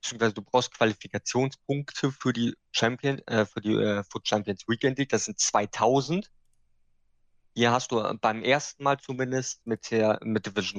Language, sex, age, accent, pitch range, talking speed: German, male, 20-39, German, 105-125 Hz, 160 wpm